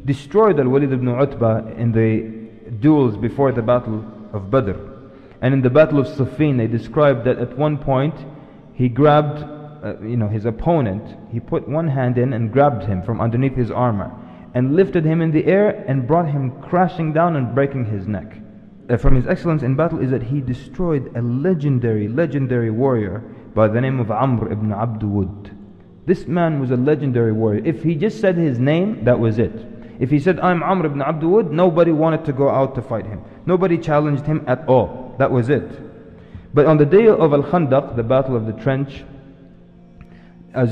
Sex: male